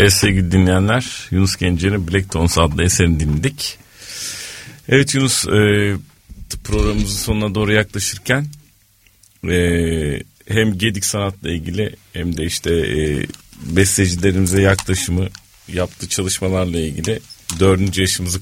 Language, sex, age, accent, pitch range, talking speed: Turkish, male, 40-59, native, 80-100 Hz, 110 wpm